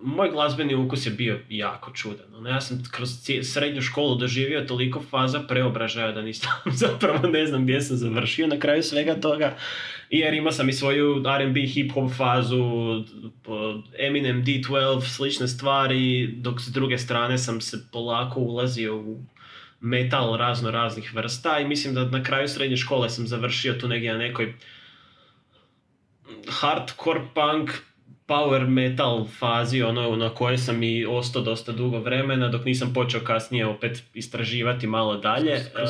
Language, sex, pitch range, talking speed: Croatian, male, 115-135 Hz, 150 wpm